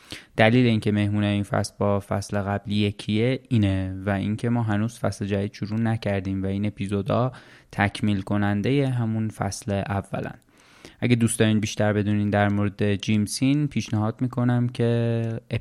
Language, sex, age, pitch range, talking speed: Persian, male, 20-39, 100-115 Hz, 150 wpm